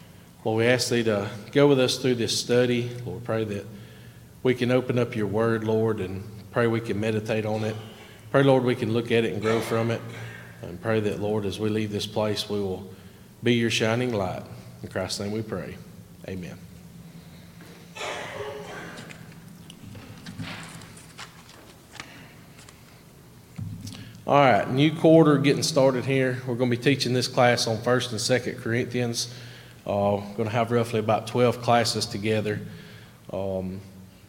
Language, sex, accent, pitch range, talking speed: English, male, American, 105-120 Hz, 160 wpm